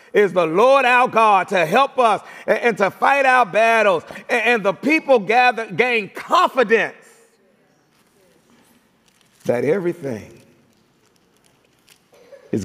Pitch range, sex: 145-230 Hz, male